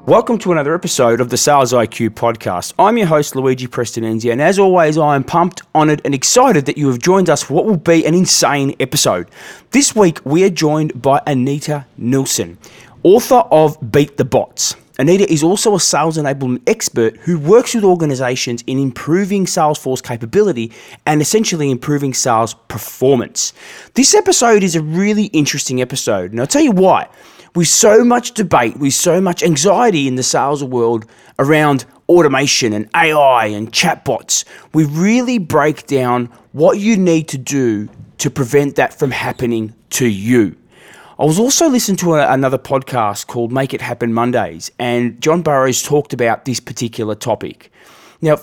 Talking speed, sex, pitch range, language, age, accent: 165 wpm, male, 125-175 Hz, English, 20-39, Australian